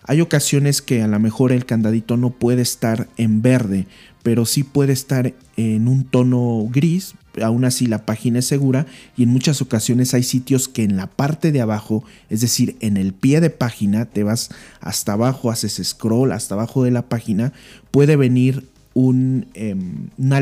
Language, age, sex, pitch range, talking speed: Spanish, 40-59, male, 110-130 Hz, 180 wpm